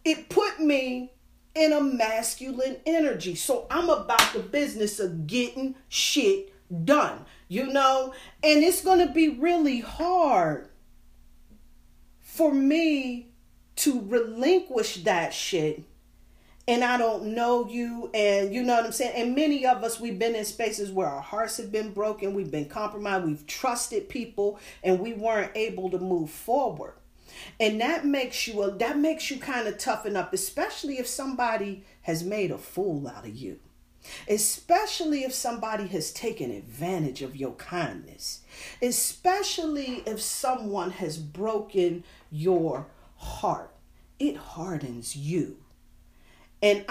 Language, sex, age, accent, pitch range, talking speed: English, female, 40-59, American, 190-275 Hz, 140 wpm